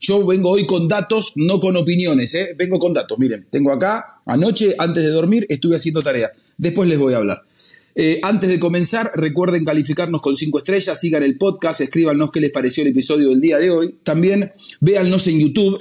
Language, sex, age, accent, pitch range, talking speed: English, male, 40-59, Argentinian, 135-195 Hz, 195 wpm